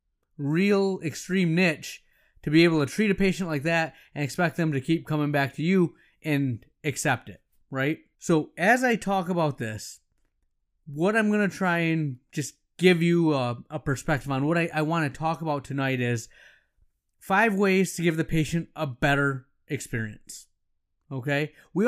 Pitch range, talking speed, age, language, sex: 135-180 Hz, 175 wpm, 20-39, English, male